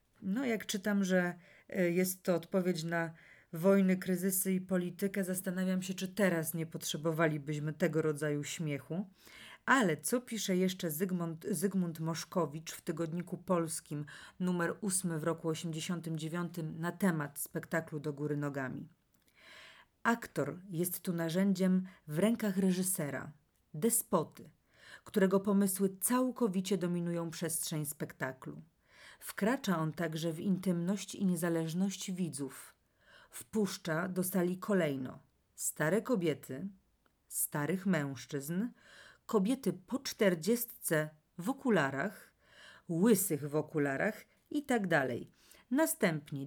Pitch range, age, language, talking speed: 160-200 Hz, 40-59, Polish, 105 wpm